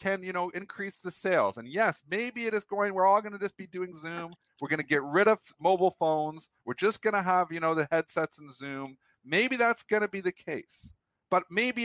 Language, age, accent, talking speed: English, 50-69, American, 245 wpm